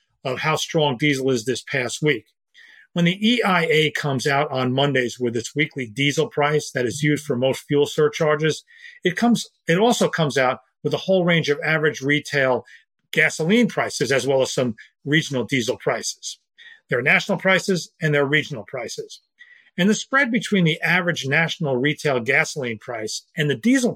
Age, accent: 40-59, American